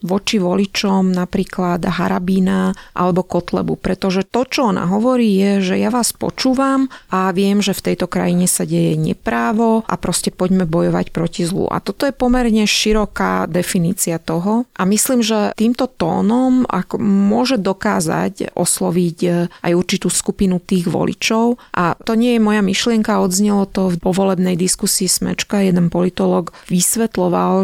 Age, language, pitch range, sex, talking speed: 30-49, Slovak, 180-210 Hz, female, 145 wpm